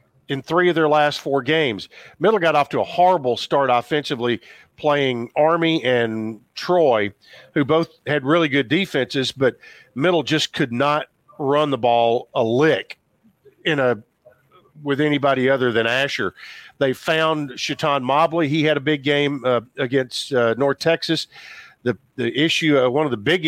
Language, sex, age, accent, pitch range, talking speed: English, male, 50-69, American, 125-155 Hz, 165 wpm